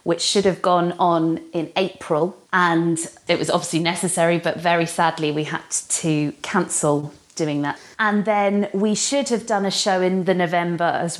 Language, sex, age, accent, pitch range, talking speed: English, female, 30-49, British, 165-190 Hz, 175 wpm